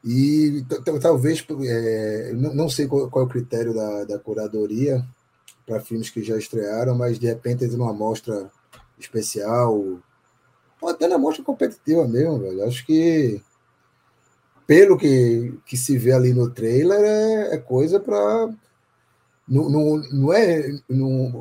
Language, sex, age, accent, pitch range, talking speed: Portuguese, male, 20-39, Brazilian, 115-145 Hz, 145 wpm